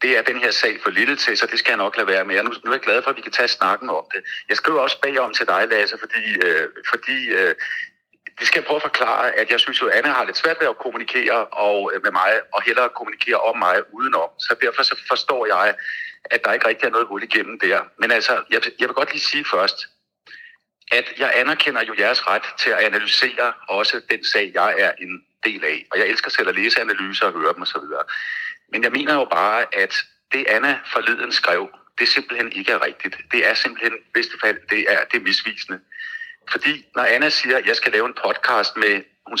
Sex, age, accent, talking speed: male, 60-79, native, 235 wpm